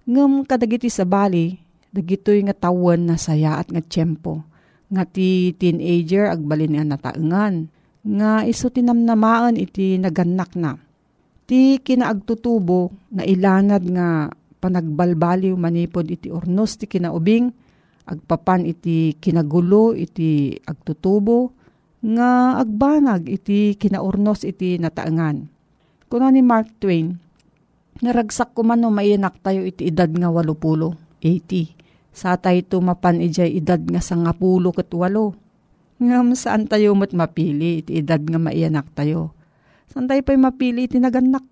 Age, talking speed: 50-69, 120 wpm